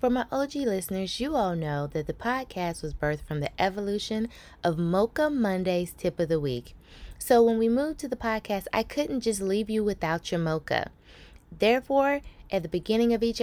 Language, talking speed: English, 190 wpm